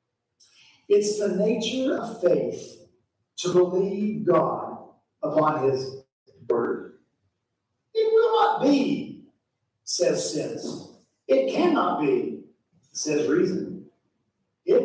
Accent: American